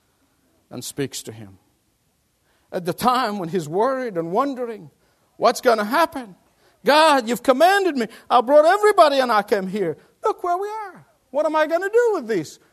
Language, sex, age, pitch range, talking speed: English, male, 50-69, 175-270 Hz, 185 wpm